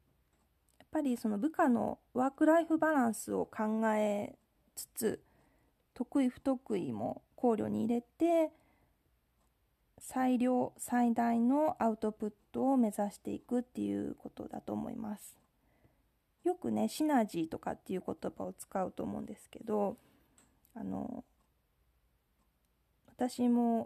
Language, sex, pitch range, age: Japanese, female, 205-260 Hz, 20-39